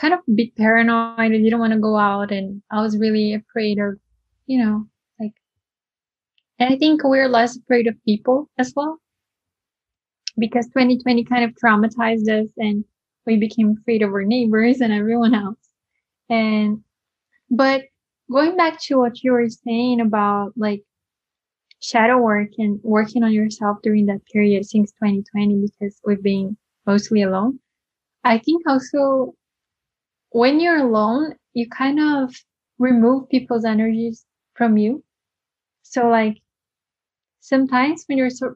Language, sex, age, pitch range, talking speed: English, female, 10-29, 215-250 Hz, 145 wpm